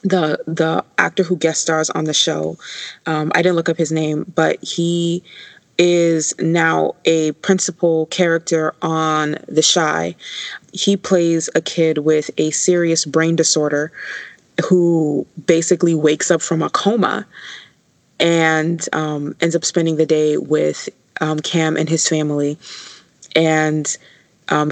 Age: 20-39